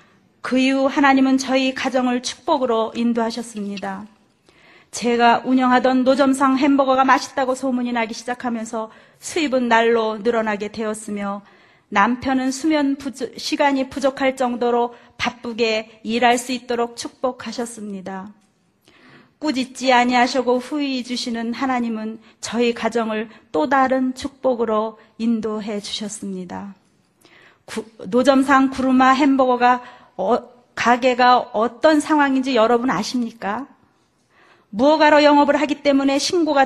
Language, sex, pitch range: Korean, female, 225-270 Hz